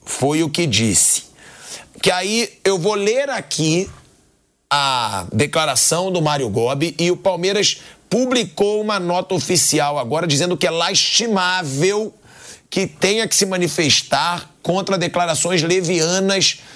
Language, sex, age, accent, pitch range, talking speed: Portuguese, male, 40-59, Brazilian, 150-205 Hz, 125 wpm